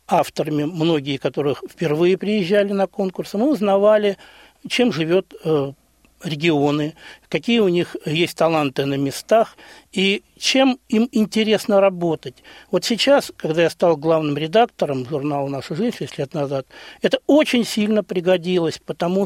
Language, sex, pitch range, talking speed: Russian, male, 150-210 Hz, 135 wpm